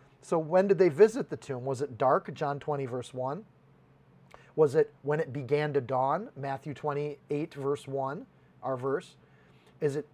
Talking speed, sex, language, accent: 170 wpm, male, English, American